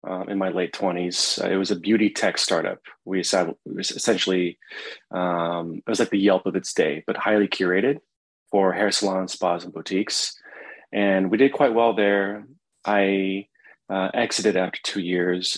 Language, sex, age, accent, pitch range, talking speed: English, male, 30-49, American, 90-105 Hz, 175 wpm